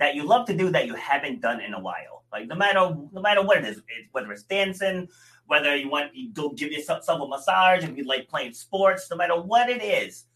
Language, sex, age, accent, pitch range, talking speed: English, male, 30-49, American, 135-185 Hz, 250 wpm